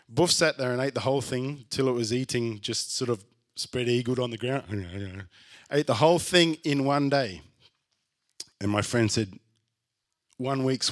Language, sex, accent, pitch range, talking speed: English, male, Australian, 105-130 Hz, 180 wpm